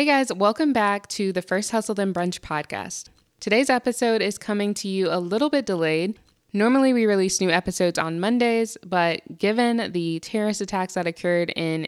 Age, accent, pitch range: 20-39, American, 170-205 Hz